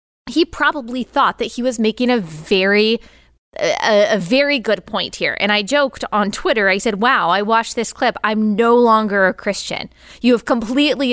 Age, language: 20-39, English